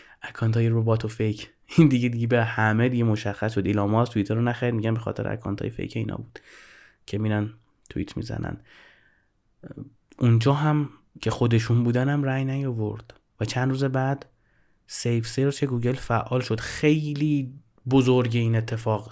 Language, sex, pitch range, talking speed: Persian, male, 115-140 Hz, 155 wpm